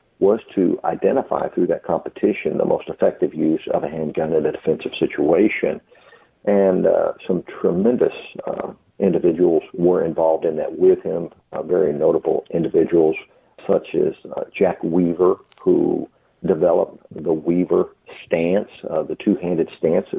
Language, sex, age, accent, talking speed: English, male, 50-69, American, 140 wpm